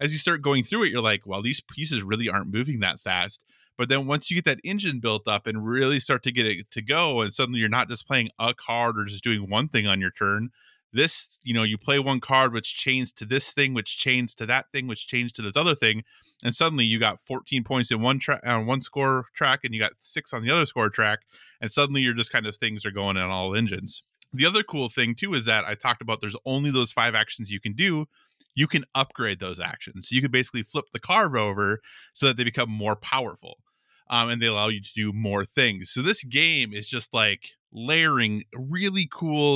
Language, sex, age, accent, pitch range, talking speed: English, male, 20-39, American, 110-135 Hz, 245 wpm